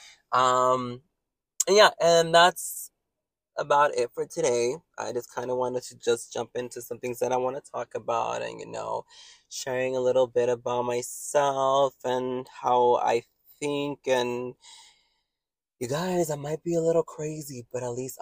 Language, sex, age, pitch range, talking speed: English, male, 20-39, 120-185 Hz, 165 wpm